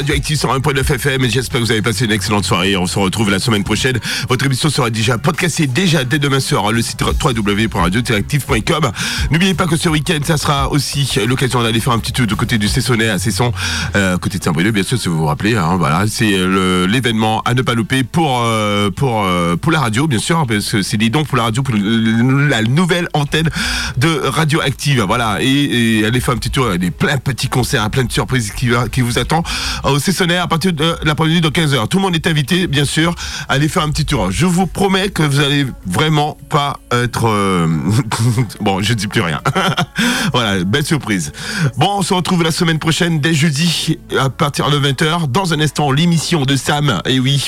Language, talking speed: French, 220 wpm